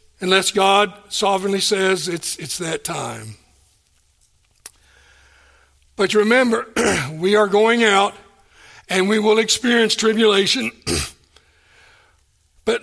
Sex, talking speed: male, 95 wpm